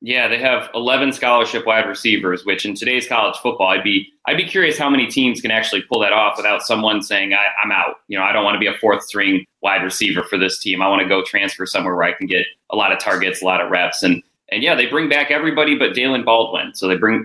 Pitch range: 105-135 Hz